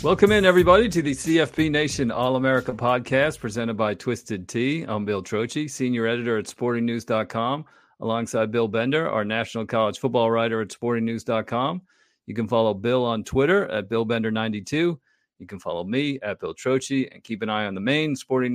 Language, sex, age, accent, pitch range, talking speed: English, male, 40-59, American, 110-130 Hz, 175 wpm